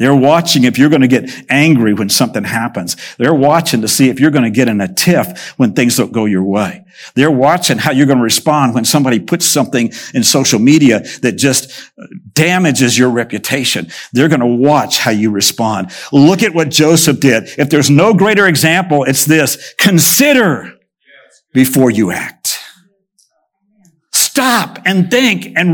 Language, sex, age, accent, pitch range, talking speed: English, male, 60-79, American, 120-175 Hz, 175 wpm